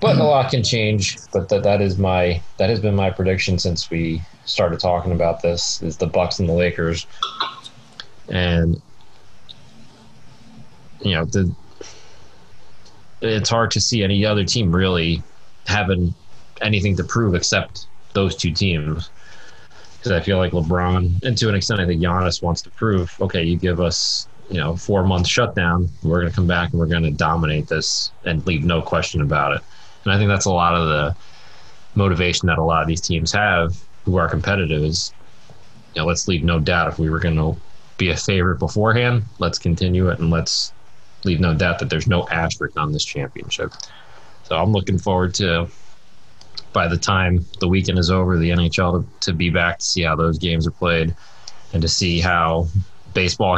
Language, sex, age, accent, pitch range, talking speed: English, male, 30-49, American, 85-95 Hz, 190 wpm